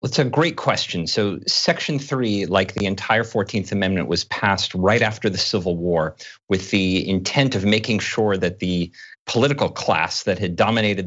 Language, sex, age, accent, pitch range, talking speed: English, male, 40-59, American, 95-120 Hz, 175 wpm